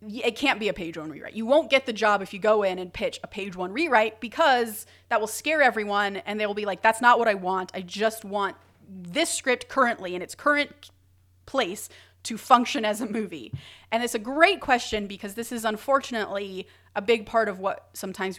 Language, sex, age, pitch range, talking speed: English, female, 30-49, 180-230 Hz, 220 wpm